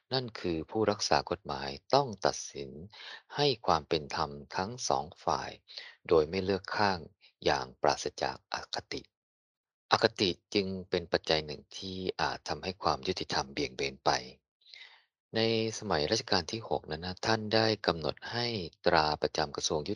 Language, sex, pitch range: Thai, male, 80-110 Hz